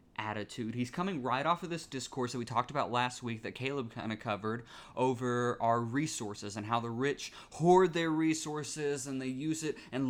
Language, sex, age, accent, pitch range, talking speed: English, male, 20-39, American, 115-155 Hz, 200 wpm